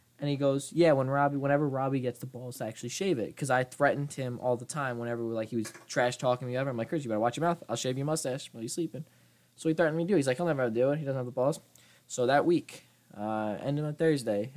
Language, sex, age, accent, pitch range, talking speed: English, male, 20-39, American, 115-150 Hz, 290 wpm